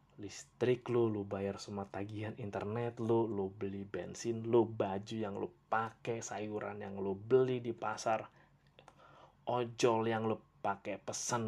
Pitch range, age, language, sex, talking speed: 110-145 Hz, 30-49, Indonesian, male, 140 wpm